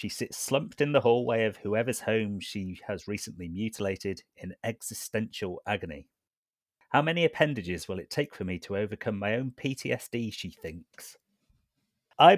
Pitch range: 95-125 Hz